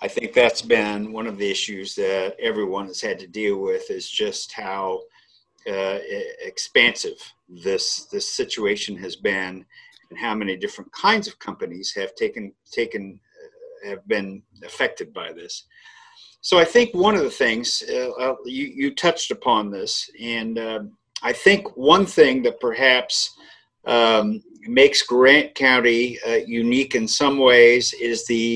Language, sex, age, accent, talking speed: English, male, 50-69, American, 155 wpm